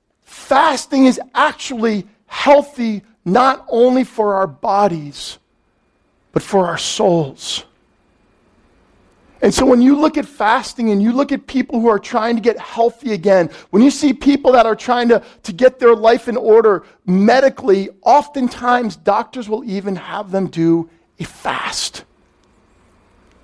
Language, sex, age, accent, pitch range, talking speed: English, male, 40-59, American, 185-245 Hz, 145 wpm